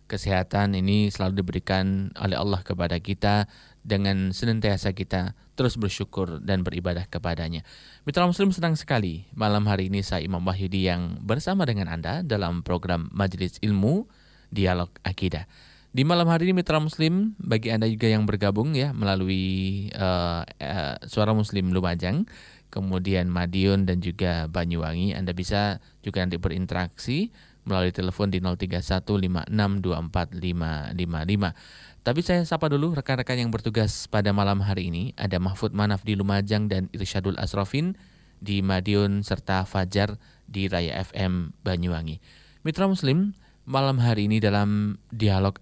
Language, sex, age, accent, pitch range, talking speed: Indonesian, male, 20-39, native, 90-110 Hz, 135 wpm